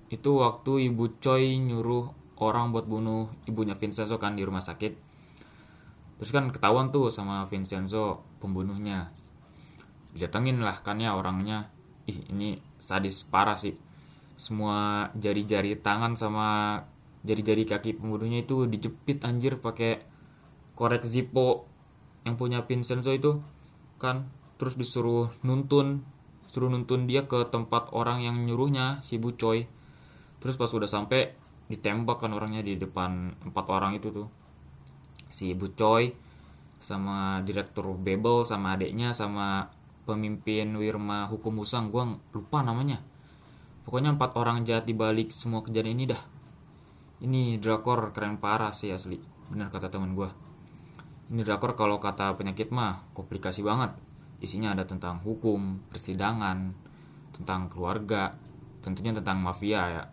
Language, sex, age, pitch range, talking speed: English, male, 20-39, 100-125 Hz, 130 wpm